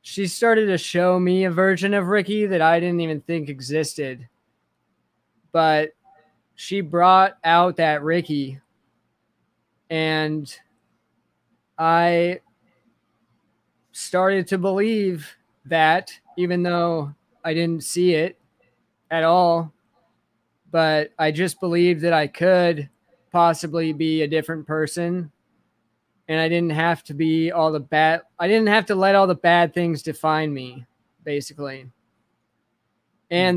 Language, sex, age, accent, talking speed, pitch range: English, male, 20-39, American, 125 wpm, 155-180 Hz